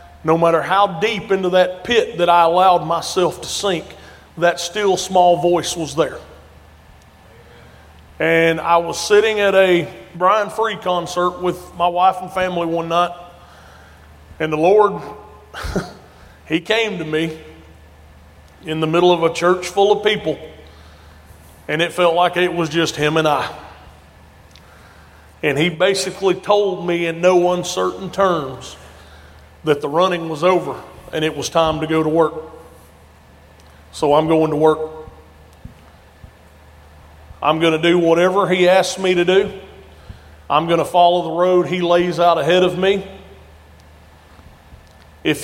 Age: 30-49